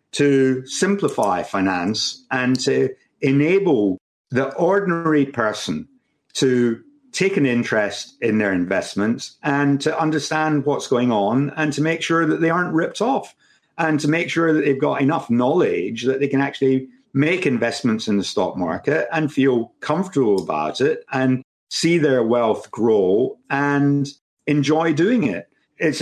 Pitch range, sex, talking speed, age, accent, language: 125-165 Hz, male, 150 wpm, 50-69, British, English